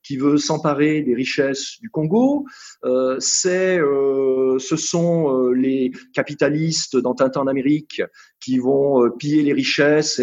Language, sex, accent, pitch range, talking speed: English, male, French, 130-180 Hz, 145 wpm